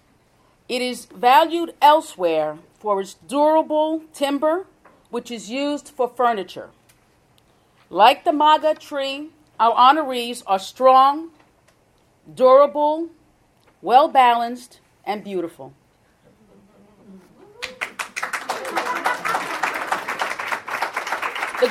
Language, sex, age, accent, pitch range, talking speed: English, female, 40-59, American, 215-295 Hz, 70 wpm